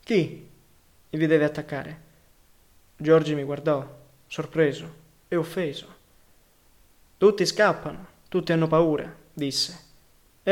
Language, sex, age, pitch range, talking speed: Italian, male, 20-39, 145-170 Hz, 95 wpm